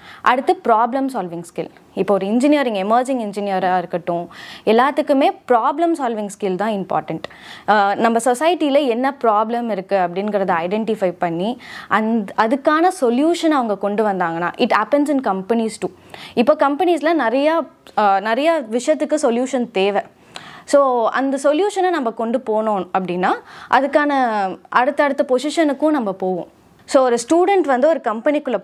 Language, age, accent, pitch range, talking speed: Tamil, 20-39, native, 210-290 Hz, 130 wpm